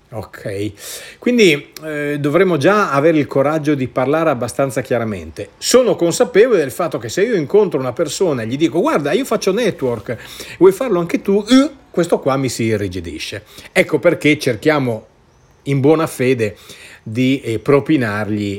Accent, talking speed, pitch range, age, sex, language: native, 150 wpm, 110-165 Hz, 40-59, male, Italian